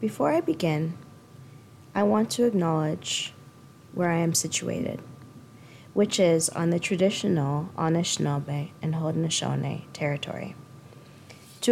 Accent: American